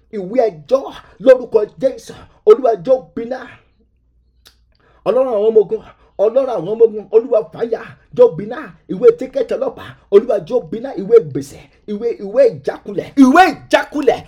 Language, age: English, 50-69